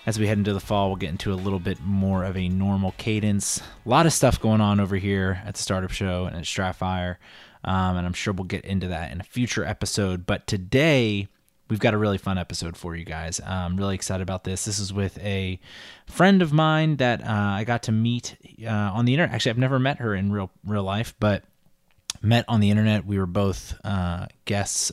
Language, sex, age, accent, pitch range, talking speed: English, male, 20-39, American, 95-105 Hz, 230 wpm